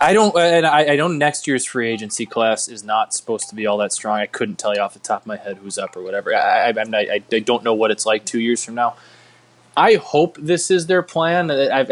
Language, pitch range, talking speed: English, 110-135 Hz, 275 wpm